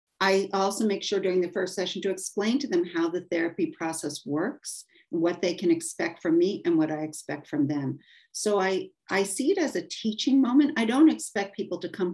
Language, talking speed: English, 220 wpm